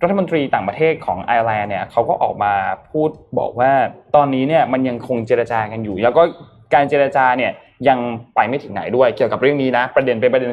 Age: 20-39